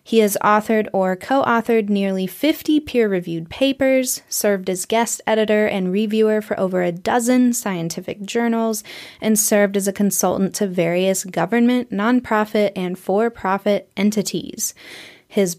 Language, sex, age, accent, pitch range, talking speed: English, female, 20-39, American, 195-235 Hz, 130 wpm